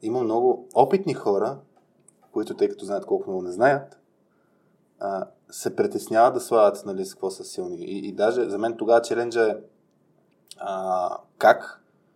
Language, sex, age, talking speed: Bulgarian, male, 20-39, 155 wpm